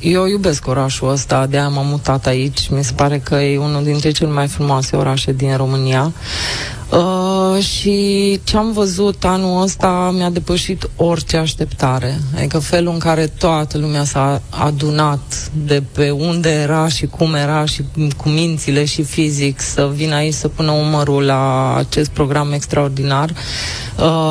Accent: native